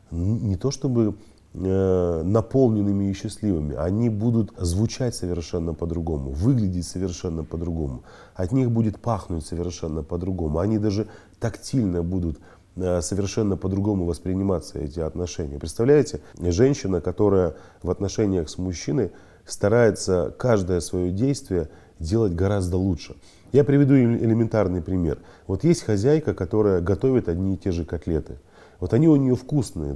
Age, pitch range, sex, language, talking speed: 30-49, 90-115 Hz, male, Russian, 125 wpm